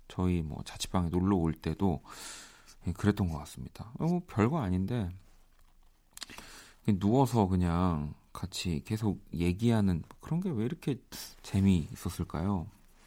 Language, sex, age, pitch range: Korean, male, 40-59, 90-115 Hz